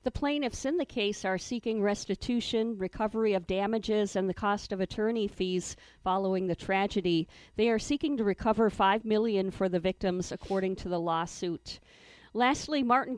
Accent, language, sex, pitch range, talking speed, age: American, English, female, 185-225 Hz, 165 wpm, 50-69